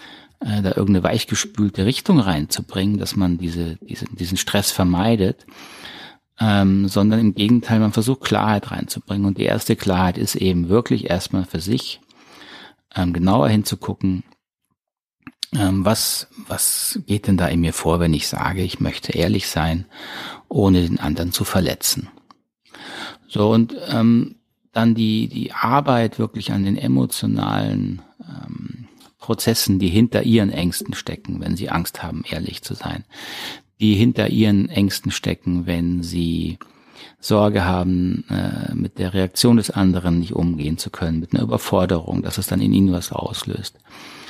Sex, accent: male, German